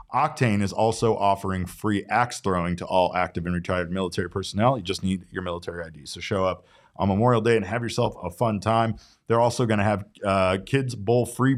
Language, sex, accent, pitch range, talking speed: English, male, American, 90-120 Hz, 210 wpm